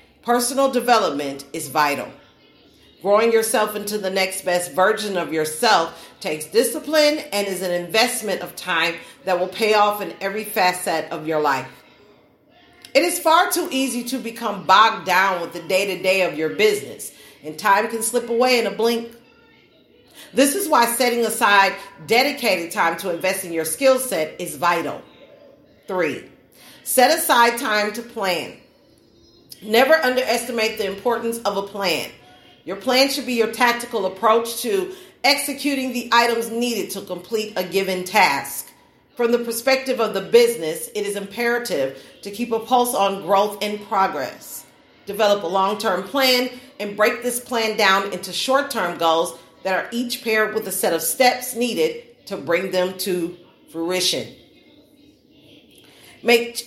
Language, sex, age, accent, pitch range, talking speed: English, female, 40-59, American, 190-250 Hz, 155 wpm